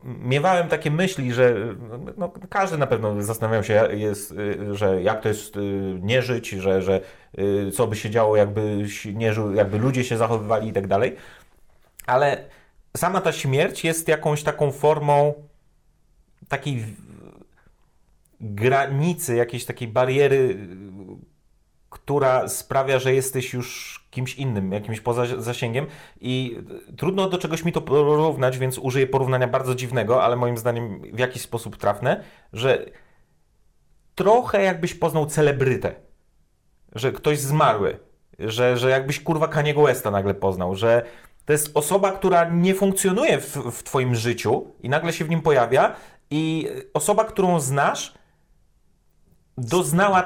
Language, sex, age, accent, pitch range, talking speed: Polish, male, 30-49, native, 110-150 Hz, 135 wpm